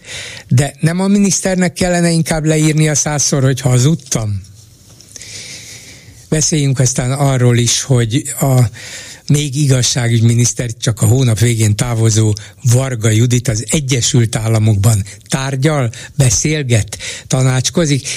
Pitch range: 115-140 Hz